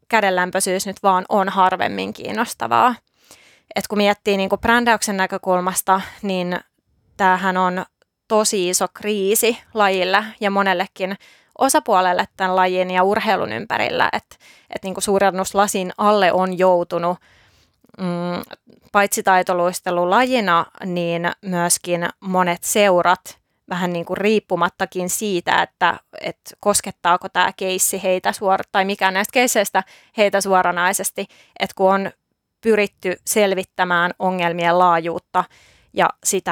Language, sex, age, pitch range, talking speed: Finnish, female, 20-39, 180-205 Hz, 110 wpm